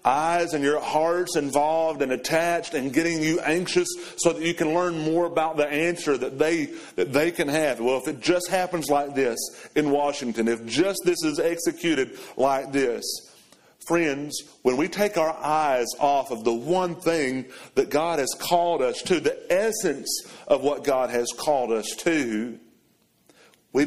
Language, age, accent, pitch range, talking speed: English, 40-59, American, 115-165 Hz, 175 wpm